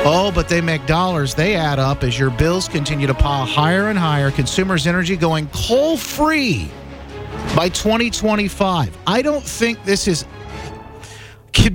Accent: American